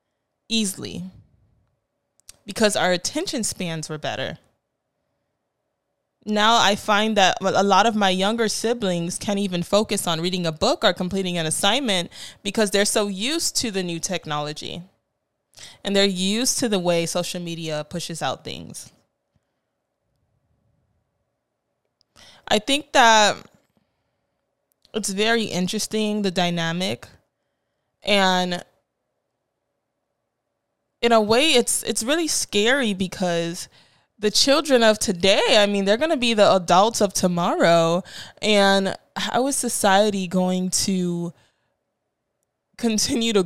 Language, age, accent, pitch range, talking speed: English, 20-39, American, 180-220 Hz, 120 wpm